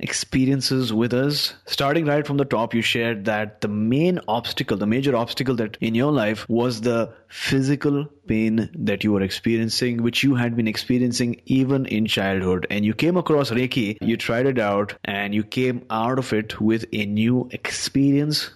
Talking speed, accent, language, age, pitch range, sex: 180 wpm, Indian, English, 30-49, 105-125 Hz, male